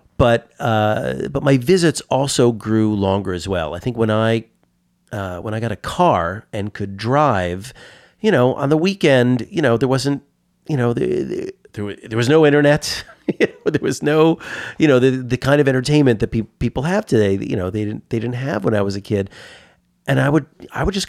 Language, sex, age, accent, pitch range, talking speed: English, male, 40-59, American, 105-145 Hz, 210 wpm